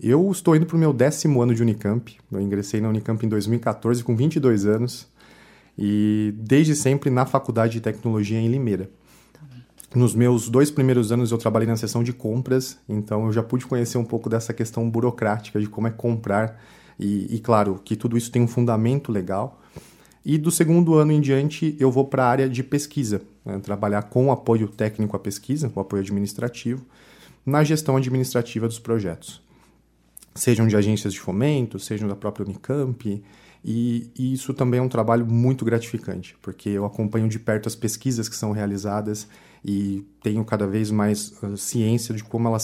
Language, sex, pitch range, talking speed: Portuguese, male, 105-125 Hz, 180 wpm